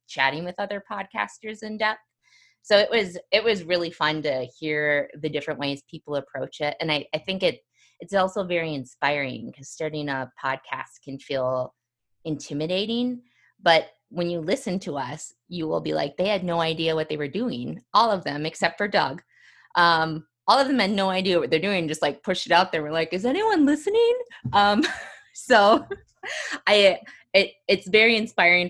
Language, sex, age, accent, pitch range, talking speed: English, female, 20-39, American, 145-195 Hz, 185 wpm